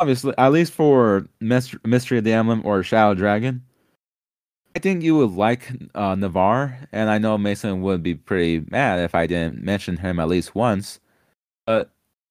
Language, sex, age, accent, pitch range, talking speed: English, male, 20-39, American, 90-120 Hz, 170 wpm